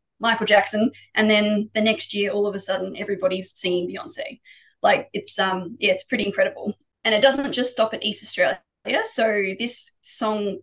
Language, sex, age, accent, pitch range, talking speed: English, female, 20-39, Australian, 195-250 Hz, 180 wpm